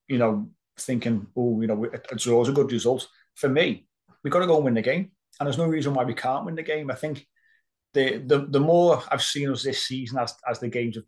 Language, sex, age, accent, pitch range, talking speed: English, male, 30-49, British, 110-130 Hz, 255 wpm